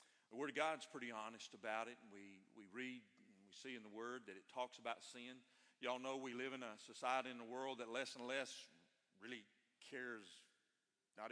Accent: American